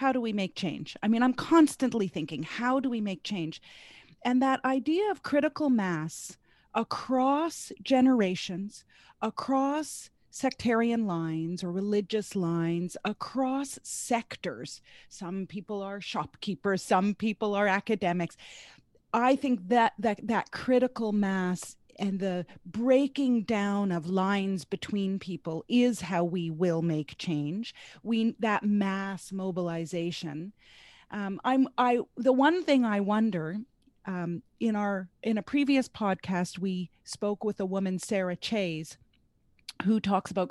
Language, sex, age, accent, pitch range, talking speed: English, female, 30-49, American, 180-240 Hz, 130 wpm